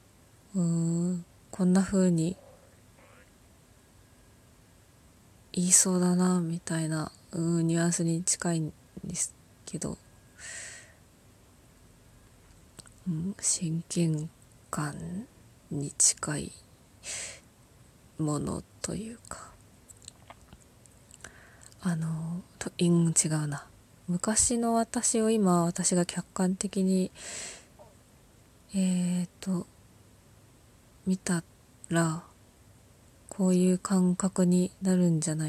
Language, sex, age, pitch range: Japanese, female, 20-39, 155-185 Hz